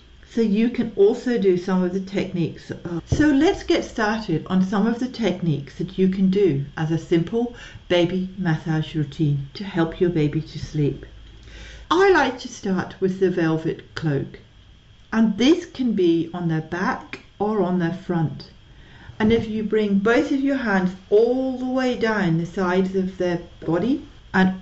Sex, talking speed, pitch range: female, 175 wpm, 160-210 Hz